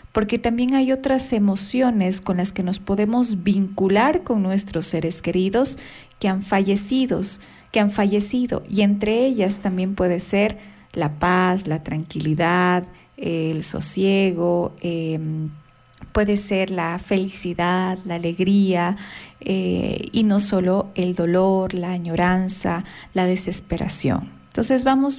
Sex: female